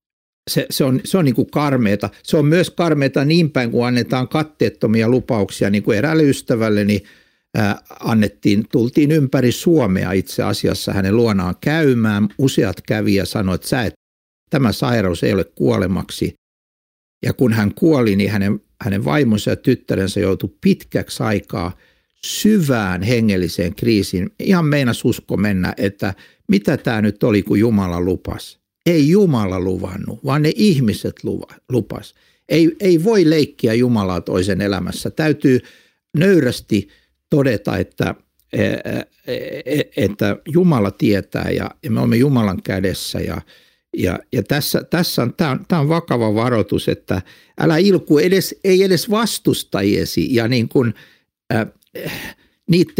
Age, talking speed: 60-79, 135 wpm